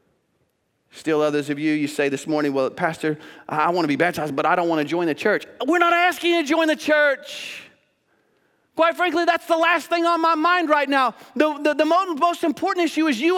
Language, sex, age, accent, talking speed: English, male, 40-59, American, 225 wpm